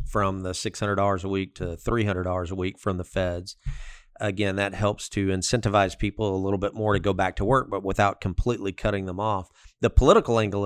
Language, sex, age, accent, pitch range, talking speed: English, male, 40-59, American, 95-110 Hz, 205 wpm